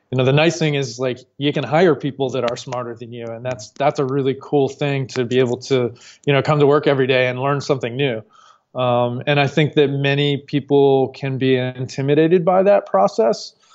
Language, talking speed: English, 225 wpm